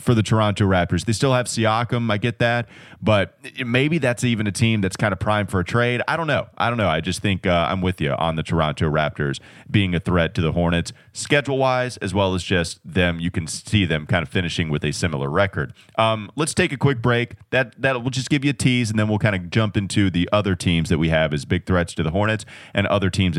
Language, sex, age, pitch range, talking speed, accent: English, male, 30-49, 90-115 Hz, 260 wpm, American